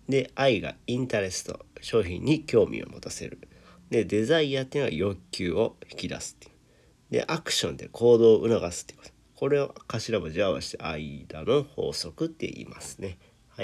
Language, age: Japanese, 40-59